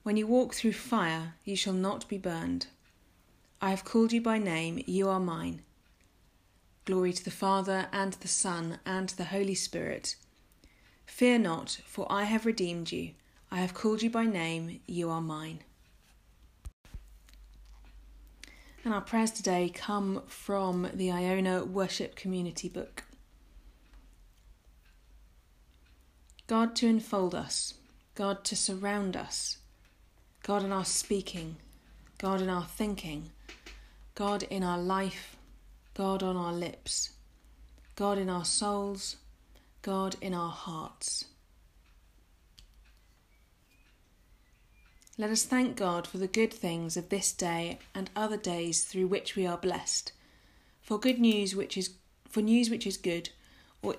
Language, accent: English, British